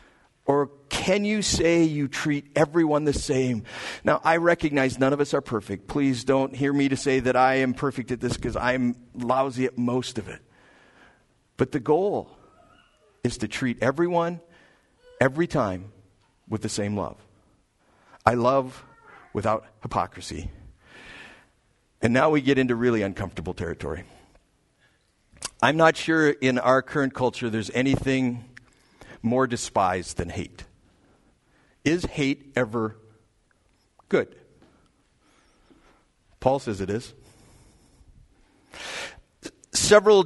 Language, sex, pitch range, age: English, male, 115-145 Hz, 50-69